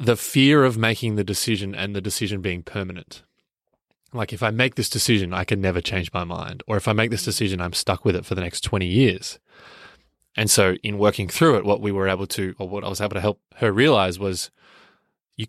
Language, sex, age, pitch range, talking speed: English, male, 20-39, 95-120 Hz, 235 wpm